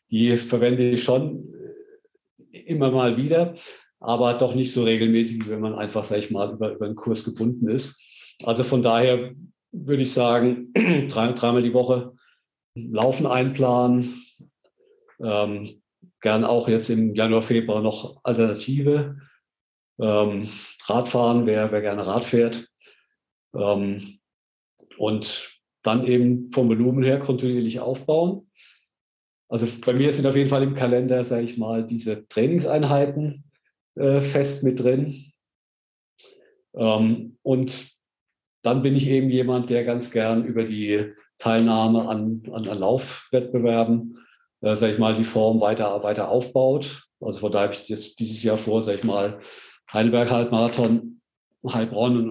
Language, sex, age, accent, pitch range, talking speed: German, male, 50-69, German, 110-130 Hz, 135 wpm